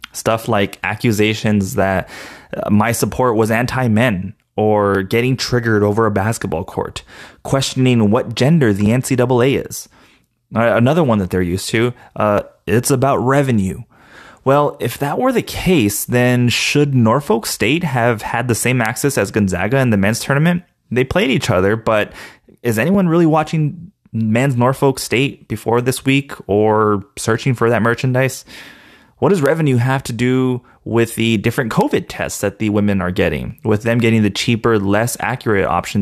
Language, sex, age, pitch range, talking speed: English, male, 20-39, 105-130 Hz, 160 wpm